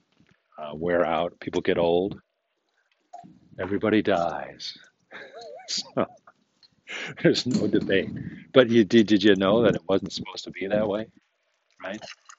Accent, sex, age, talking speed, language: American, male, 50-69, 130 wpm, English